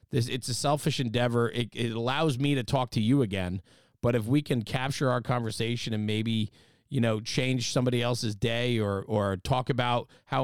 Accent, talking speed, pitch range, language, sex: American, 195 wpm, 110-135 Hz, English, male